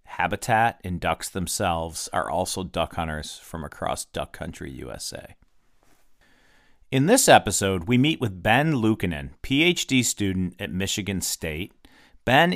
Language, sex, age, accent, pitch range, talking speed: English, male, 40-59, American, 90-125 Hz, 130 wpm